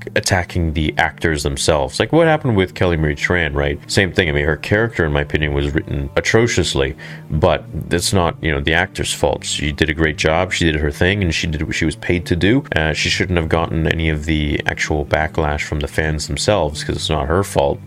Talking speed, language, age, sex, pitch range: 230 wpm, English, 30-49, male, 75-100 Hz